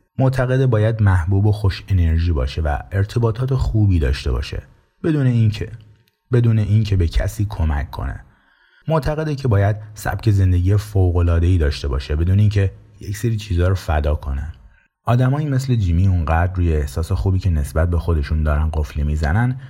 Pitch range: 80-110 Hz